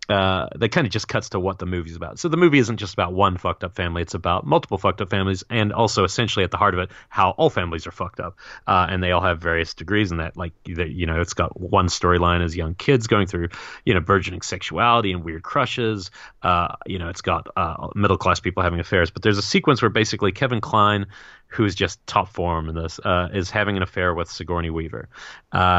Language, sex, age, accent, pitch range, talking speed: English, male, 30-49, American, 90-110 Hz, 240 wpm